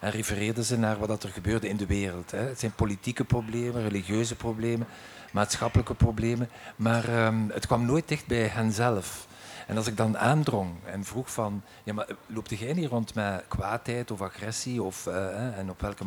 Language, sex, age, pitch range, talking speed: Dutch, male, 50-69, 105-125 Hz, 175 wpm